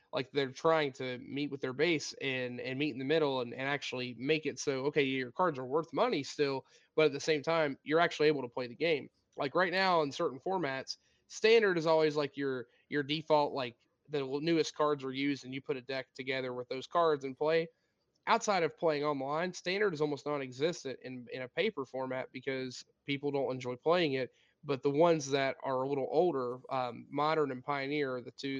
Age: 20-39